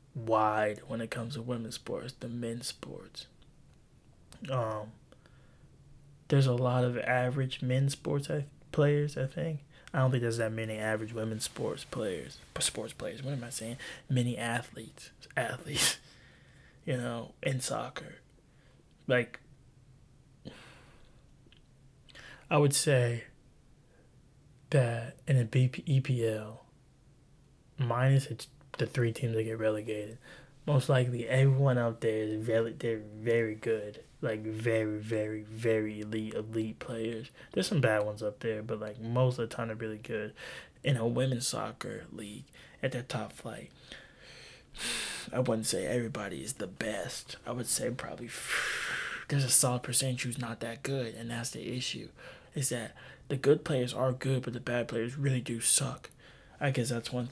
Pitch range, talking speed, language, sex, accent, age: 115-135 Hz, 150 wpm, English, male, American, 20-39